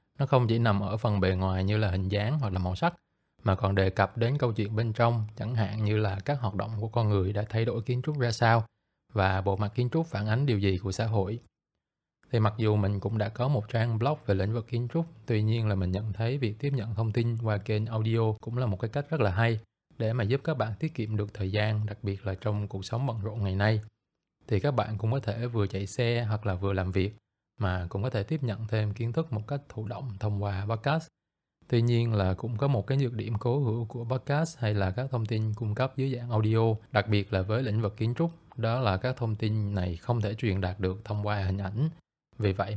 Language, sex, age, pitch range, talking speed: Vietnamese, male, 20-39, 100-120 Hz, 265 wpm